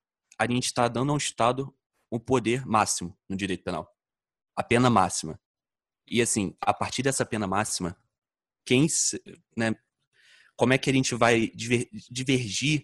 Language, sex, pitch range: Portuguese, male, 100-120 Hz